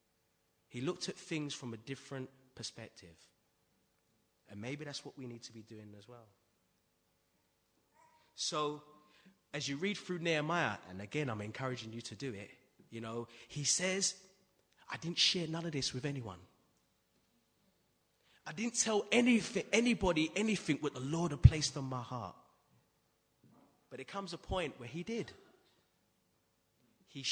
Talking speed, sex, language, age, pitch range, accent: 150 wpm, male, English, 30-49, 120-175 Hz, British